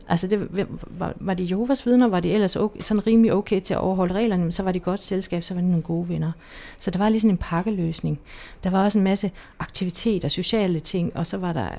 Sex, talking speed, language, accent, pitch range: female, 240 wpm, Danish, native, 160-205 Hz